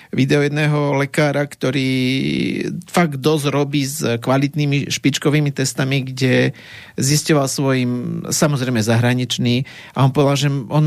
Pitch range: 135-165 Hz